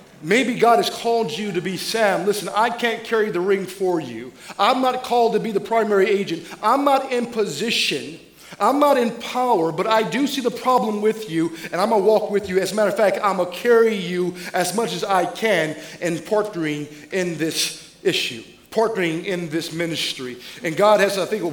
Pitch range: 185-235 Hz